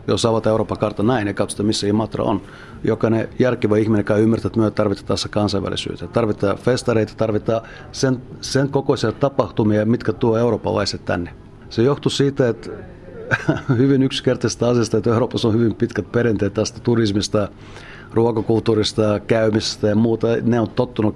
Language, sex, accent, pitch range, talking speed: Finnish, male, native, 105-120 Hz, 155 wpm